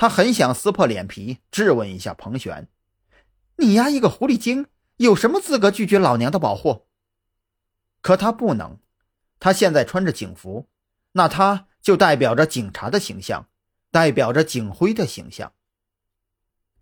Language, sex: Chinese, male